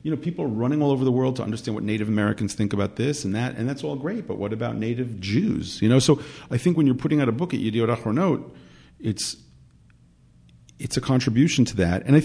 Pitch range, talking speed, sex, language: 100-130 Hz, 235 wpm, male, English